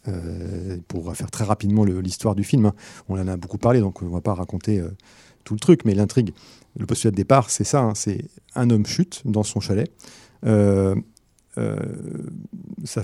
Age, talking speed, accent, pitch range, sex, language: 40-59, 200 wpm, French, 100-130 Hz, male, French